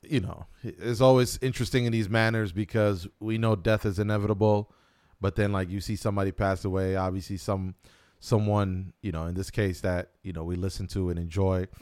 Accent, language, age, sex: American, English, 30-49, male